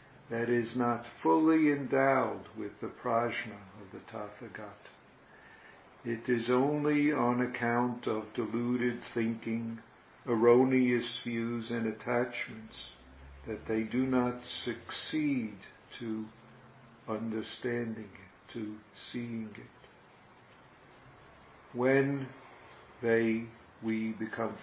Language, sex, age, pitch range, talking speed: English, male, 50-69, 110-125 Hz, 95 wpm